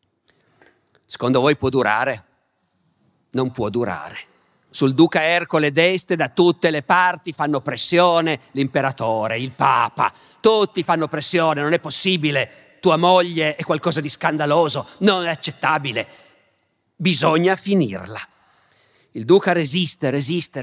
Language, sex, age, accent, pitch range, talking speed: Italian, male, 50-69, native, 135-175 Hz, 120 wpm